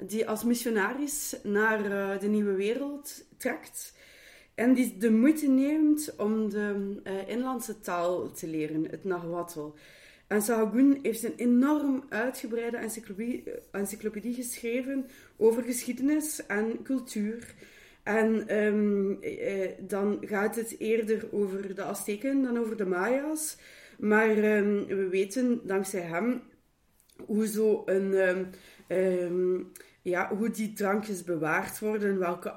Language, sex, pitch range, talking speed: Dutch, female, 195-235 Hz, 125 wpm